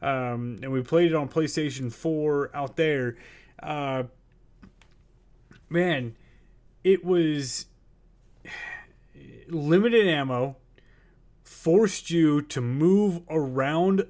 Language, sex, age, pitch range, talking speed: English, male, 30-49, 130-165 Hz, 90 wpm